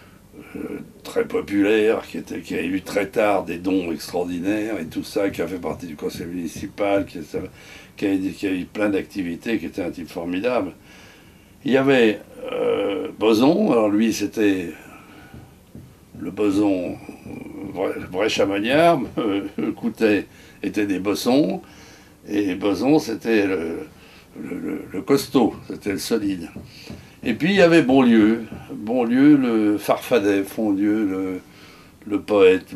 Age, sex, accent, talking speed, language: 60-79, male, French, 150 wpm, French